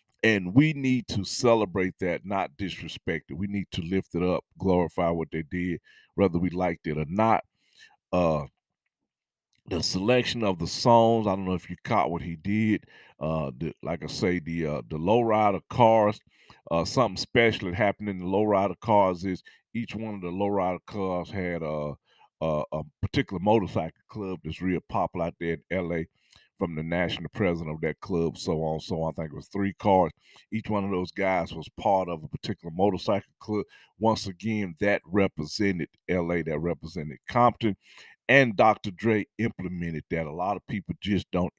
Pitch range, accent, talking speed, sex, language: 85-105 Hz, American, 185 wpm, male, English